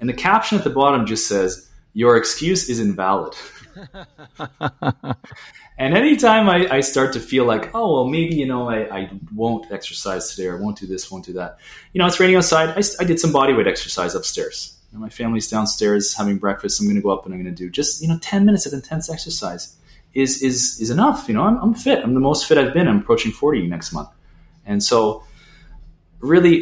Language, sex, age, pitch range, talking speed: English, male, 30-49, 100-150 Hz, 220 wpm